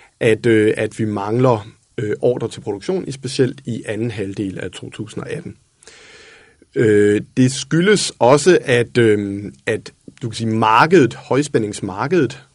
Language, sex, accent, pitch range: Danish, male, native, 105-130 Hz